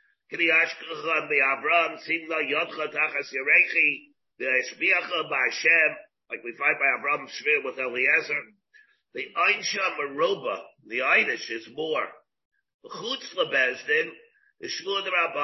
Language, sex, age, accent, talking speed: English, male, 50-69, American, 70 wpm